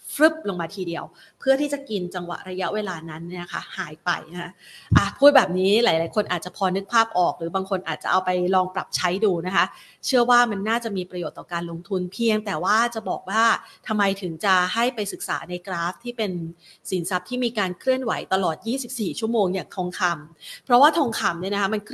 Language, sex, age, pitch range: Thai, female, 30-49, 180-230 Hz